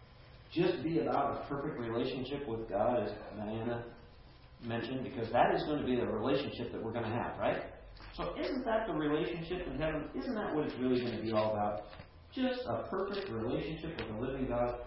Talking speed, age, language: 200 wpm, 40-59, English